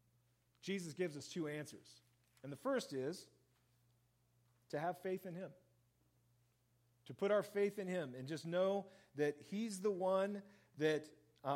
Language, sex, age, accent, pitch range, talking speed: English, male, 40-59, American, 125-195 Hz, 145 wpm